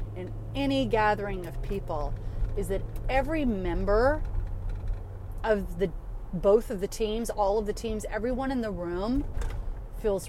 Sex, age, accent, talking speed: female, 30-49, American, 140 wpm